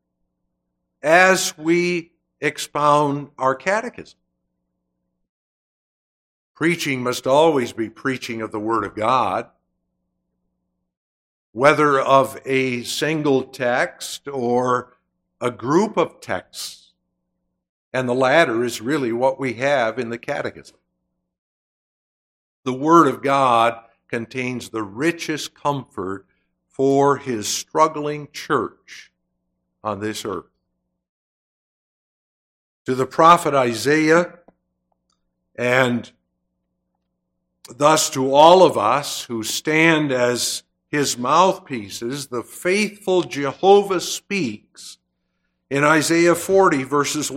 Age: 60-79